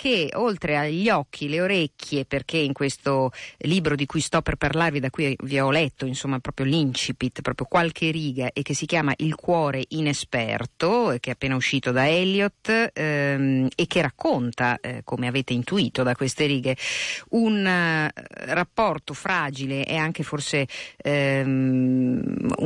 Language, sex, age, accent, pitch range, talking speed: Italian, female, 50-69, native, 135-165 Hz, 155 wpm